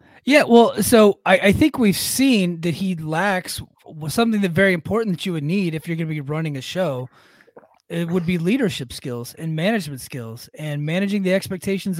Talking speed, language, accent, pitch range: 195 wpm, English, American, 150-200 Hz